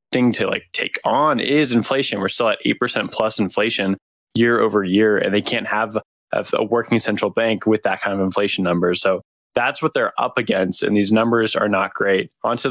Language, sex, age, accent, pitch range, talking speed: English, male, 20-39, American, 105-120 Hz, 205 wpm